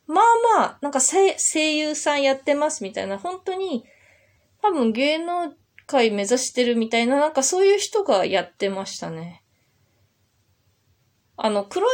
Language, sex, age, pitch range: Japanese, female, 20-39, 180-285 Hz